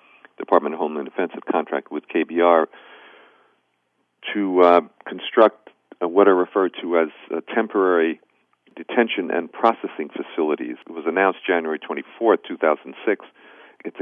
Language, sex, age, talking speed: English, male, 50-69, 125 wpm